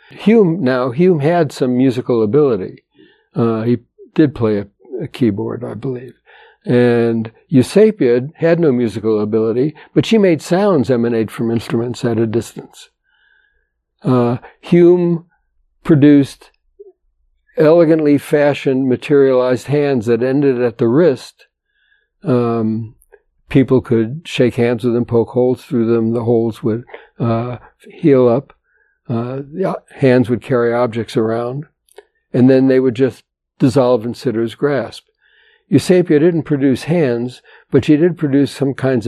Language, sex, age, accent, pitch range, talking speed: English, male, 60-79, American, 120-155 Hz, 130 wpm